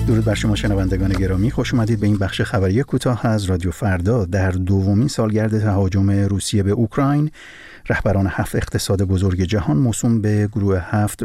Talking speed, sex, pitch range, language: 160 wpm, male, 100-120 Hz, Persian